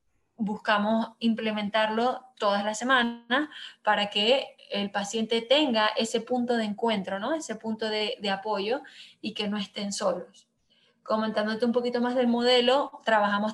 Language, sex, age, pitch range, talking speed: Spanish, female, 20-39, 205-235 Hz, 140 wpm